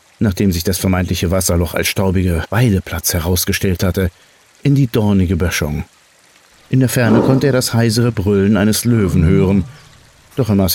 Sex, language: male, German